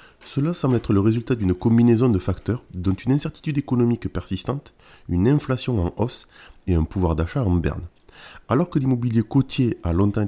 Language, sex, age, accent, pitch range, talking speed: French, male, 20-39, French, 95-130 Hz, 175 wpm